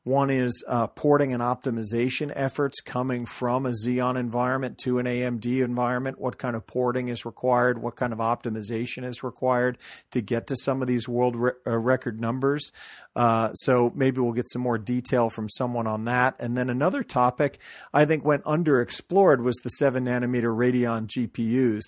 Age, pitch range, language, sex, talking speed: 40-59, 120-130 Hz, English, male, 175 wpm